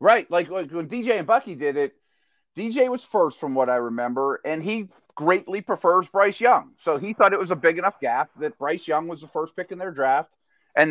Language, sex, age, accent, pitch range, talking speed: English, male, 30-49, American, 135-190 Hz, 230 wpm